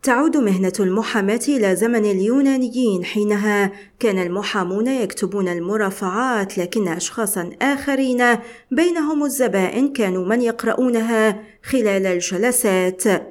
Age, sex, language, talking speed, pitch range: 40-59, female, Arabic, 95 wpm, 190-245 Hz